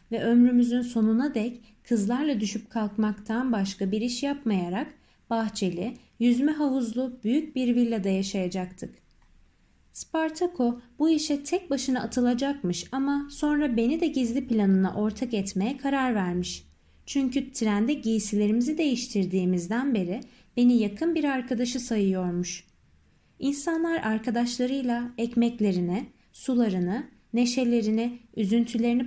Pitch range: 215-275 Hz